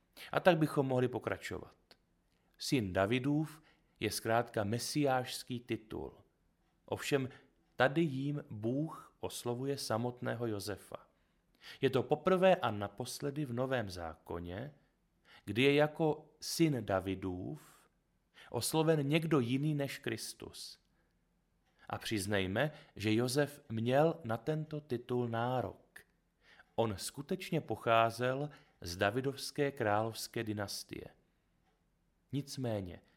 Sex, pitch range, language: male, 105-140 Hz, Czech